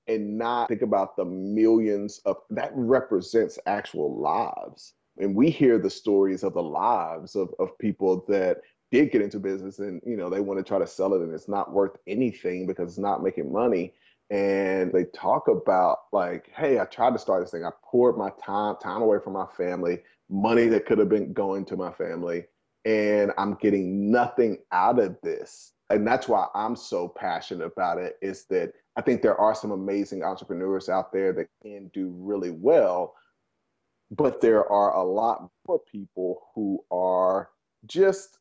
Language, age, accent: English, 30-49, American